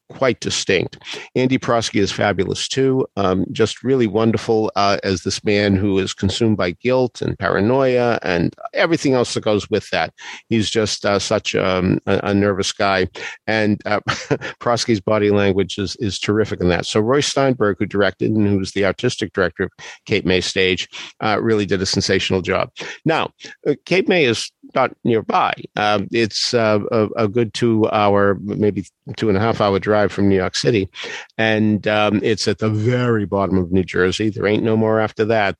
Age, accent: 50-69, American